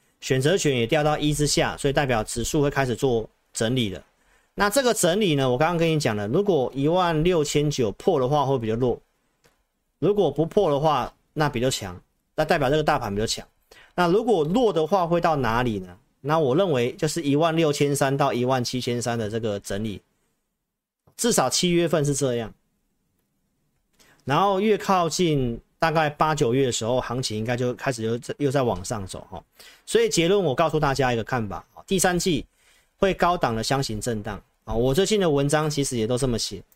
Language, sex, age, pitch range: Chinese, male, 40-59, 120-160 Hz